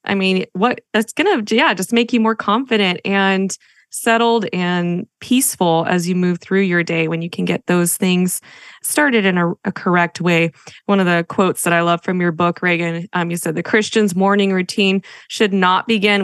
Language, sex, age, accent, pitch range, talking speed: English, female, 20-39, American, 180-225 Hz, 205 wpm